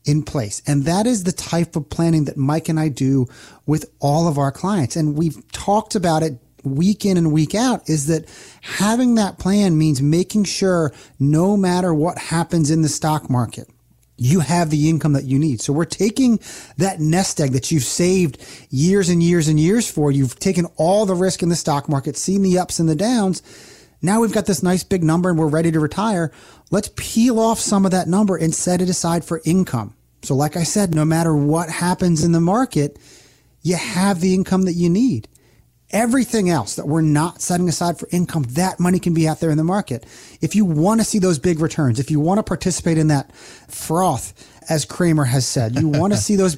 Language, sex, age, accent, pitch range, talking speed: English, male, 30-49, American, 150-185 Hz, 215 wpm